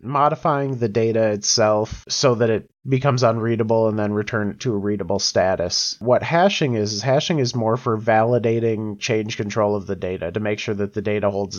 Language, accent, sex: English, American, male